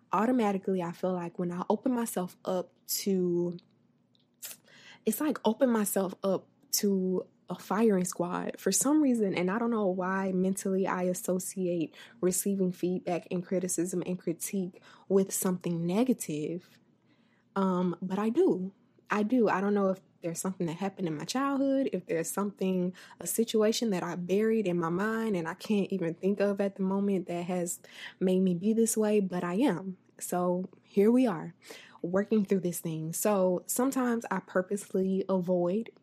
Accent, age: American, 20-39